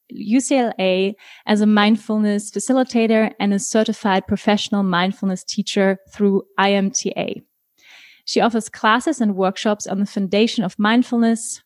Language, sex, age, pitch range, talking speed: German, female, 20-39, 195-225 Hz, 120 wpm